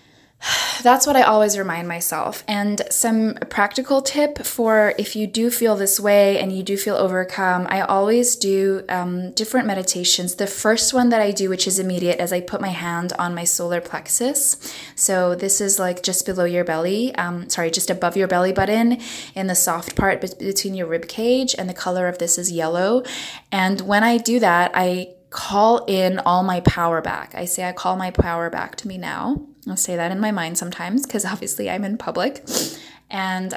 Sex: female